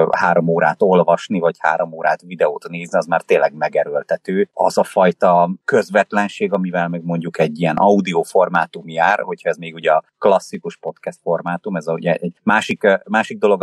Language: Hungarian